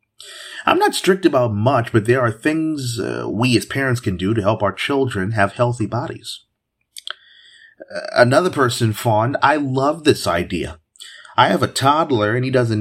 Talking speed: 170 wpm